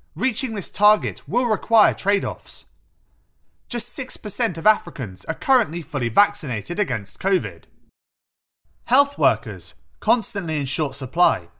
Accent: British